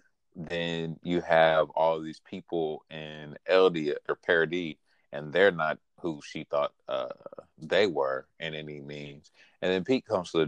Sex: male